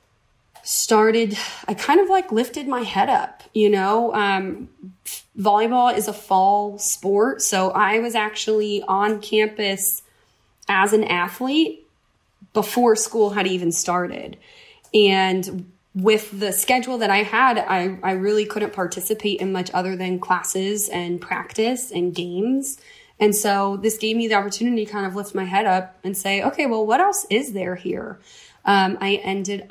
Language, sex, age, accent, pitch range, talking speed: English, female, 20-39, American, 190-220 Hz, 160 wpm